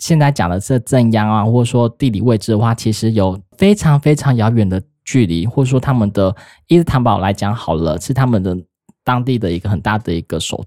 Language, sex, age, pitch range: Chinese, male, 20-39, 100-135 Hz